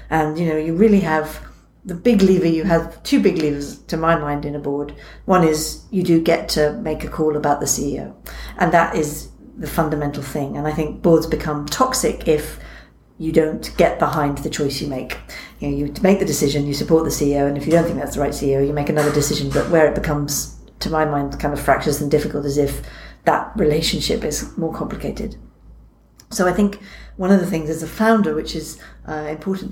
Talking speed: 220 wpm